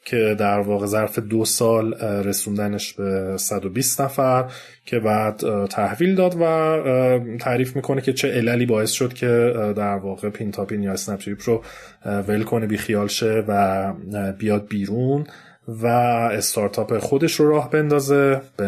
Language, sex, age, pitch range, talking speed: Persian, male, 30-49, 105-125 Hz, 140 wpm